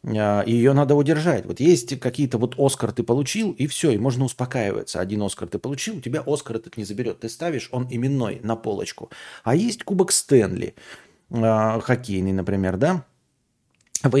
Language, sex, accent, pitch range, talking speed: Russian, male, native, 110-150 Hz, 165 wpm